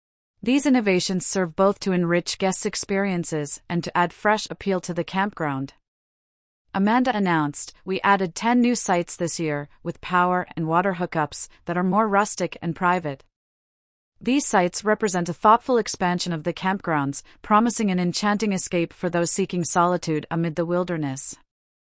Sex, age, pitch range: female, 40-59, 165-200 Hz